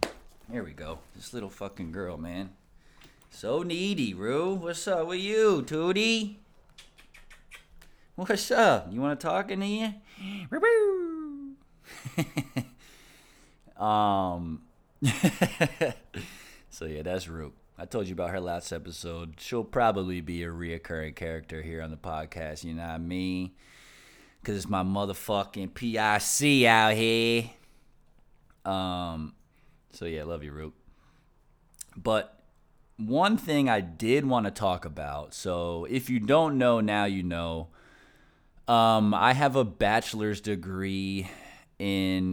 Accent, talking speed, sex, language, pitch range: American, 125 wpm, male, English, 85-115 Hz